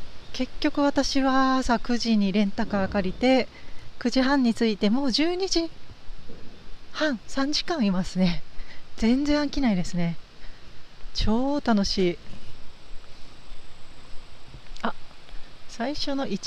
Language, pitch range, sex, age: Japanese, 205-275 Hz, female, 40-59